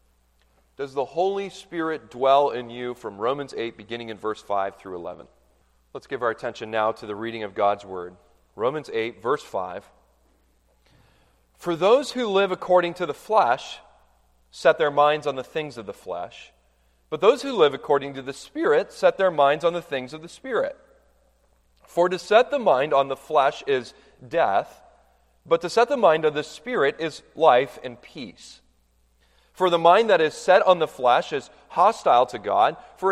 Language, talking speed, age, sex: English, 185 wpm, 30-49, male